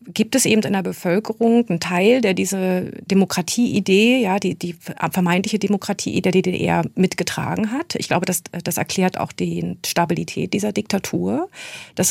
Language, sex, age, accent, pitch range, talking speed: German, female, 40-59, German, 170-200 Hz, 160 wpm